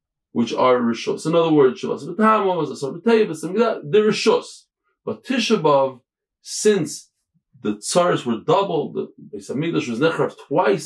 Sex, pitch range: male, 140-220 Hz